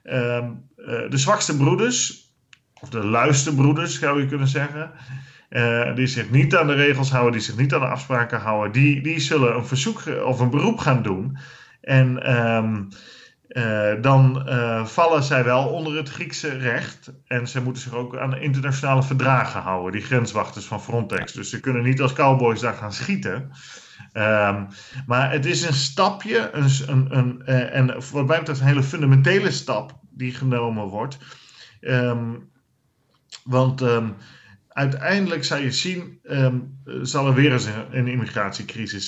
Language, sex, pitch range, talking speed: Dutch, male, 120-140 Hz, 160 wpm